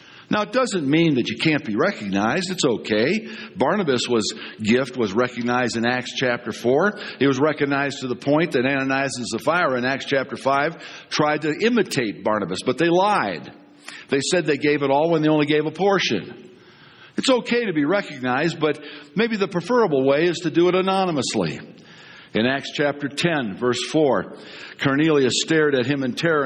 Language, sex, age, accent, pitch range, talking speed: English, male, 60-79, American, 125-170 Hz, 180 wpm